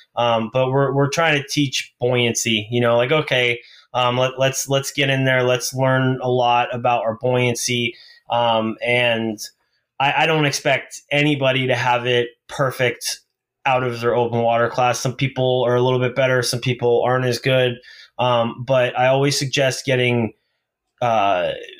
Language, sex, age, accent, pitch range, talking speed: English, male, 20-39, American, 120-135 Hz, 170 wpm